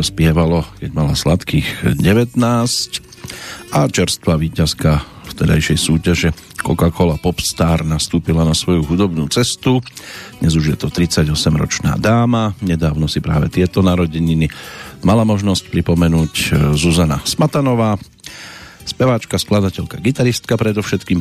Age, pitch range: 40-59, 80-110 Hz